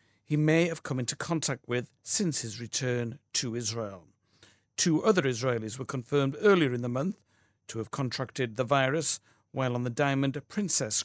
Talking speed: 170 wpm